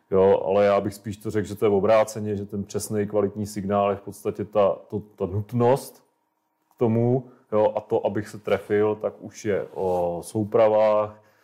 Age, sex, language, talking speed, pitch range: 30-49, male, Czech, 175 wpm, 95-105 Hz